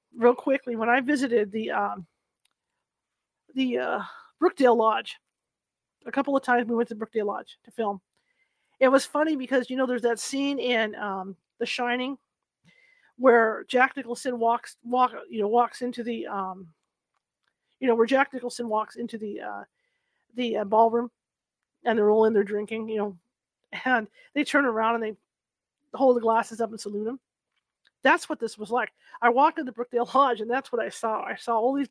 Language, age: English, 40-59